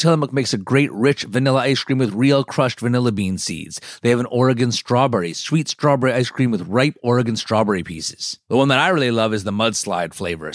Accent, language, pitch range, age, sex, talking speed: American, English, 125-160 Hz, 30-49, male, 215 wpm